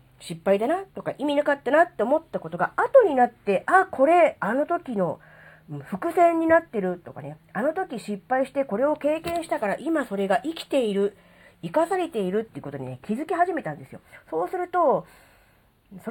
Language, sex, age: Japanese, female, 40-59